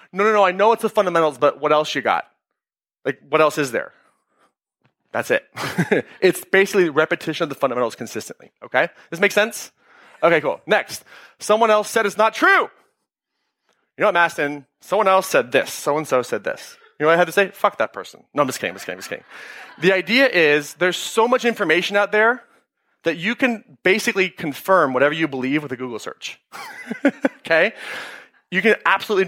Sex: male